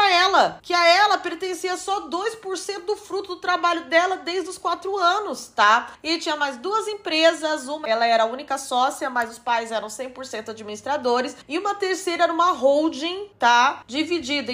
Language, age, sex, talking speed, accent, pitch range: Portuguese, 20-39, female, 175 wpm, Brazilian, 270-360 Hz